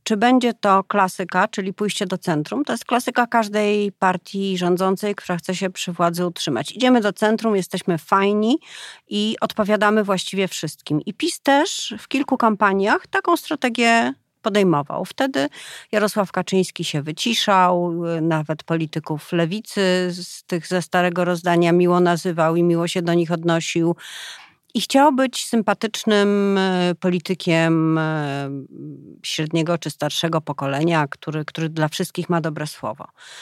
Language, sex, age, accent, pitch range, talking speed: Polish, female, 40-59, native, 170-215 Hz, 135 wpm